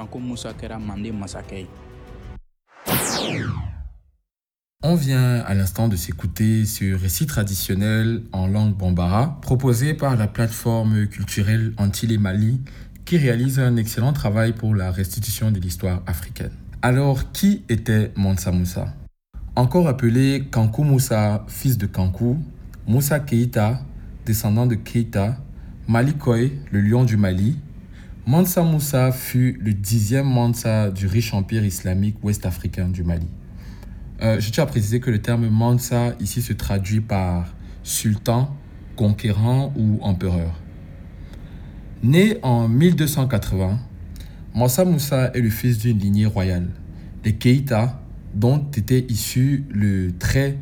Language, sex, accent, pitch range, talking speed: French, male, French, 95-125 Hz, 120 wpm